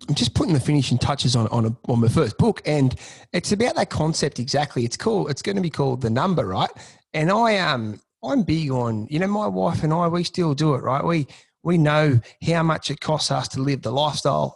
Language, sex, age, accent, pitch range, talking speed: English, male, 30-49, Australian, 125-165 Hz, 235 wpm